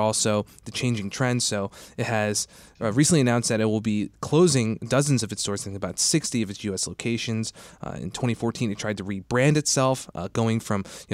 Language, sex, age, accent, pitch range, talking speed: English, male, 20-39, American, 100-125 Hz, 205 wpm